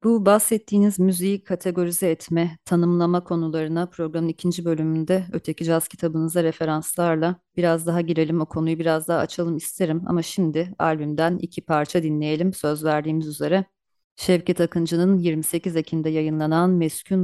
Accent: native